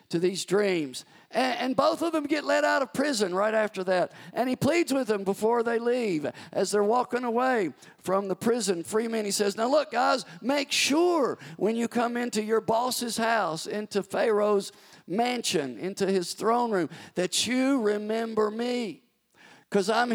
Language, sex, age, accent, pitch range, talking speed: English, male, 50-69, American, 175-235 Hz, 180 wpm